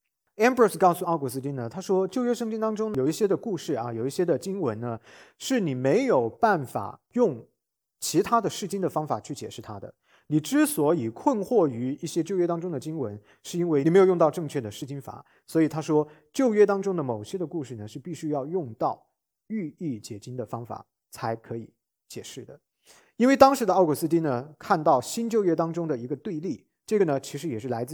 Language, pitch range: English, 125-190 Hz